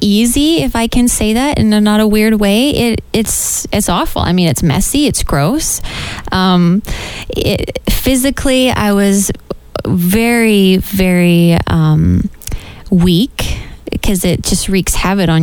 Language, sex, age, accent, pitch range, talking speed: English, female, 20-39, American, 175-210 Hz, 145 wpm